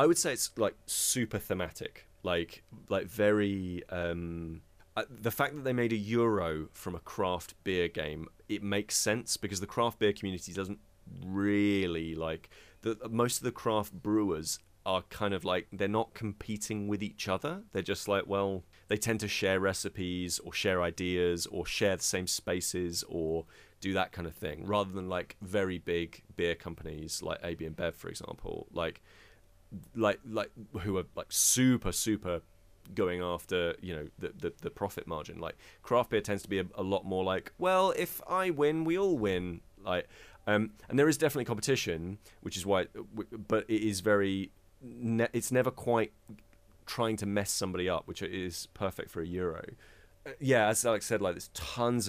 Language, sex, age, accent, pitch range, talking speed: English, male, 30-49, British, 90-110 Hz, 180 wpm